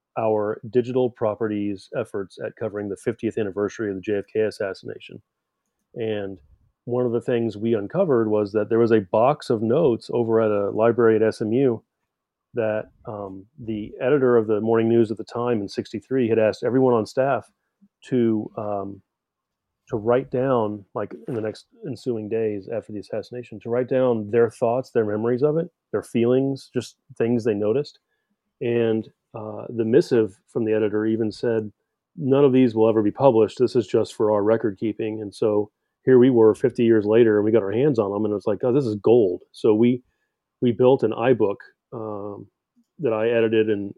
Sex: male